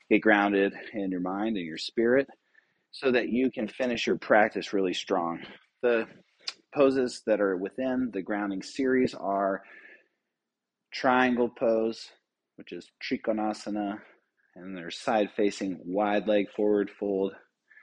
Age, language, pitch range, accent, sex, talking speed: 30-49, English, 100-120 Hz, American, male, 125 wpm